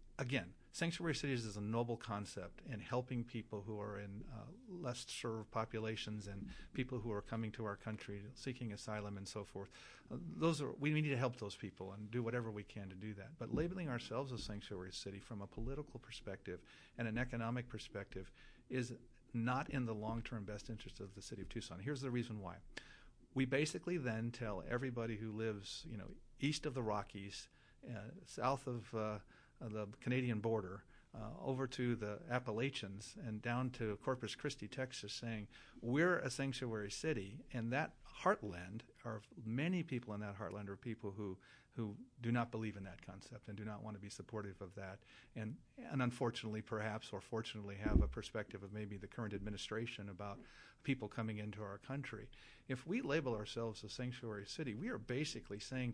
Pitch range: 105-125 Hz